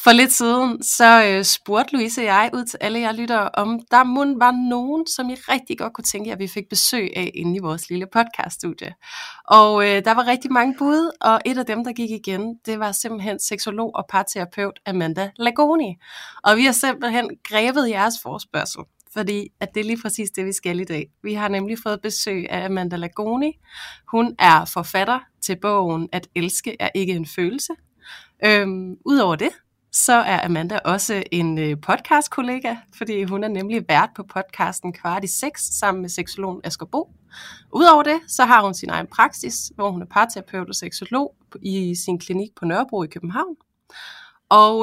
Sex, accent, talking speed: female, native, 185 wpm